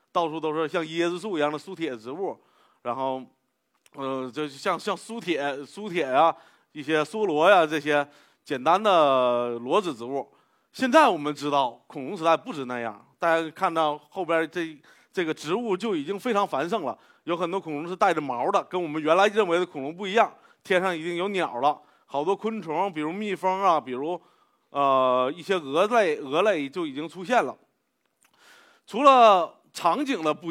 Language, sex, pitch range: Chinese, male, 150-205 Hz